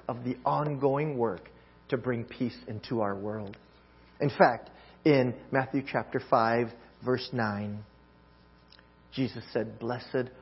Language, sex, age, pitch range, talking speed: English, male, 40-59, 105-155 Hz, 120 wpm